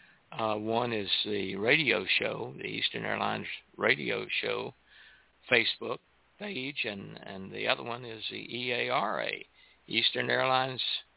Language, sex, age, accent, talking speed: English, male, 60-79, American, 140 wpm